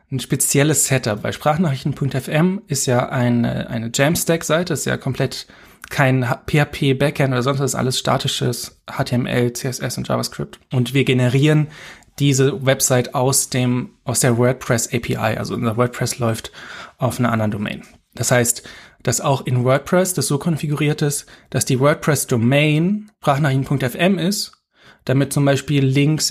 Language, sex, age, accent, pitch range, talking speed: German, male, 20-39, German, 125-150 Hz, 140 wpm